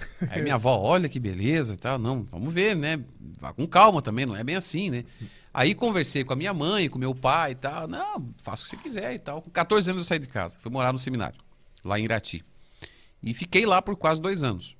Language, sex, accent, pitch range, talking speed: Portuguese, male, Brazilian, 115-170 Hz, 245 wpm